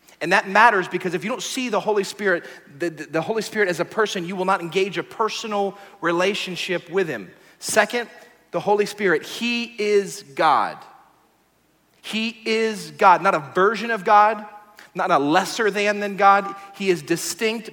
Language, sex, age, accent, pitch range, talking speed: English, male, 40-59, American, 170-210 Hz, 175 wpm